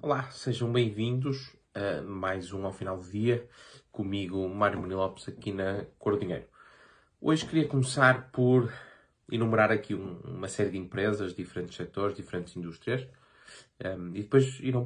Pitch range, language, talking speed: 95-115 Hz, Portuguese, 135 wpm